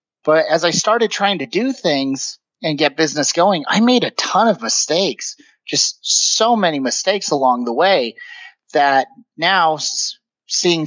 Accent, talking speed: American, 155 wpm